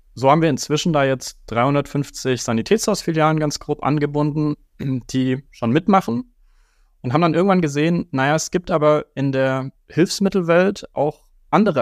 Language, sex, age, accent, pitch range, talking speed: German, male, 30-49, German, 120-155 Hz, 140 wpm